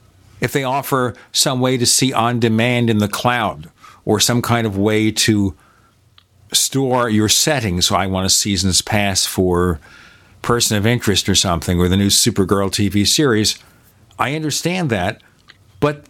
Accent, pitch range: American, 105-135 Hz